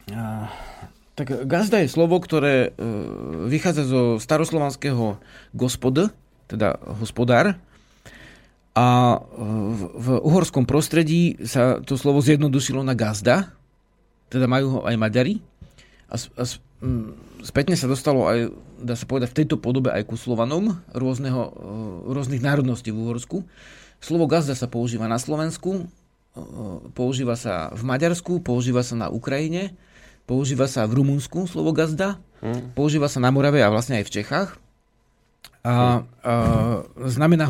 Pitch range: 115-145 Hz